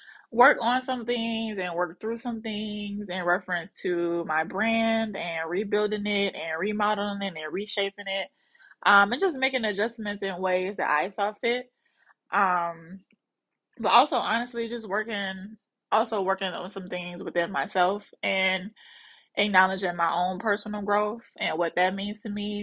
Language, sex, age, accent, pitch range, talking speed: English, female, 20-39, American, 180-220 Hz, 155 wpm